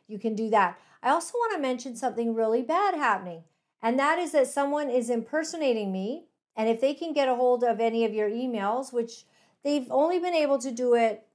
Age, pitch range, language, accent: 50-69, 220-270 Hz, English, American